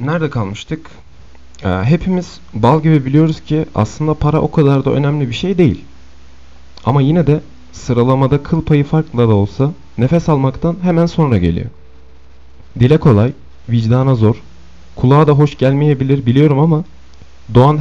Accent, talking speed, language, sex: native, 140 wpm, Turkish, male